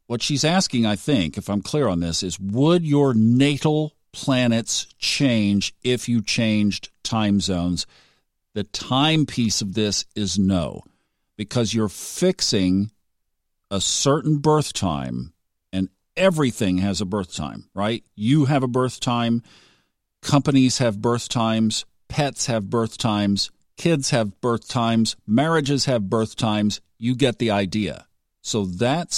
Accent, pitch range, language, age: American, 100-130 Hz, English, 50-69